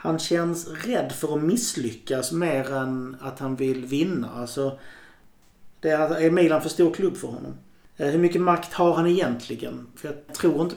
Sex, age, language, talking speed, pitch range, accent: male, 30-49, Swedish, 175 wpm, 135-165 Hz, native